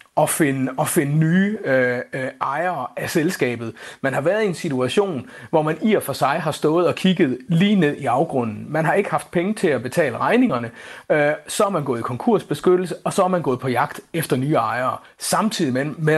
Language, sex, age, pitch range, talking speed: Danish, male, 30-49, 140-195 Hz, 210 wpm